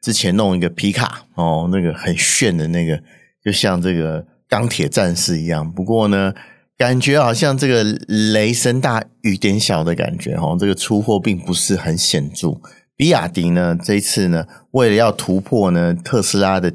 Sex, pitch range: male, 85-115 Hz